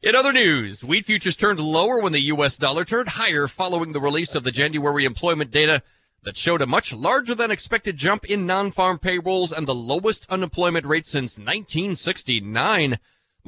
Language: English